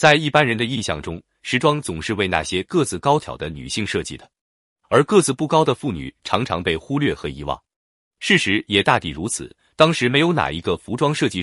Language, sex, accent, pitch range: Chinese, male, native, 95-150 Hz